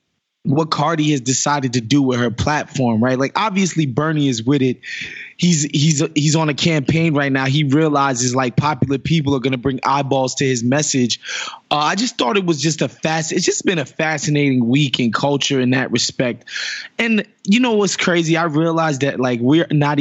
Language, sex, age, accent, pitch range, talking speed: English, male, 20-39, American, 135-175 Hz, 200 wpm